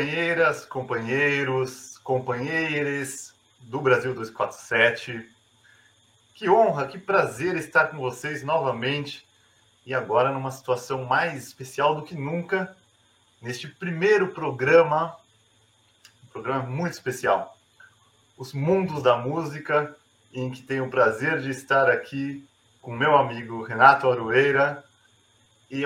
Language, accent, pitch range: Portuguese, Brazilian, 120-155 Hz